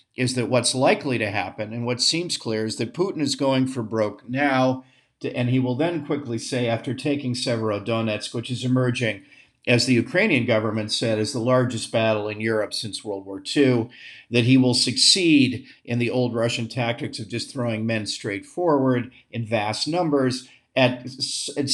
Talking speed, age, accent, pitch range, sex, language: 180 wpm, 50-69, American, 115-140 Hz, male, English